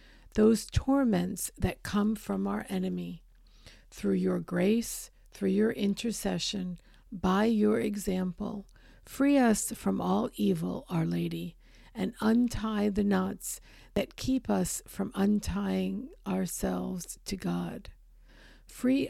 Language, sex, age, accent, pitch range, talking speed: English, female, 50-69, American, 170-210 Hz, 115 wpm